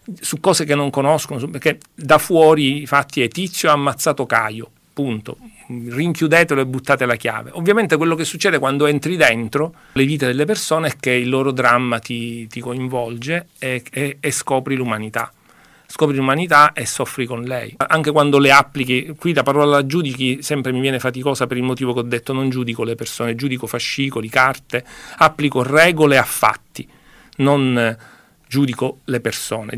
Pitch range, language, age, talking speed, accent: 120-150 Hz, Italian, 40-59, 170 wpm, native